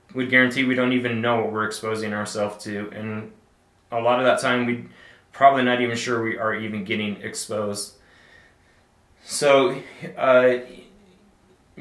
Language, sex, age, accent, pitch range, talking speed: English, male, 20-39, American, 110-125 Hz, 150 wpm